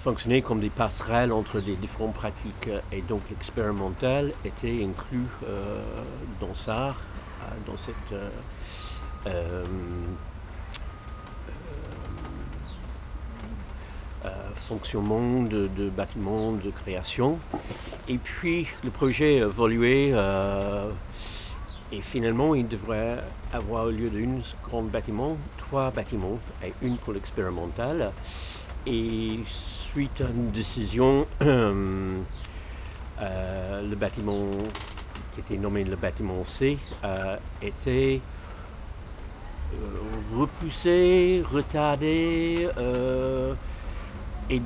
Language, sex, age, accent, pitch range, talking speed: French, male, 60-79, French, 95-125 Hz, 95 wpm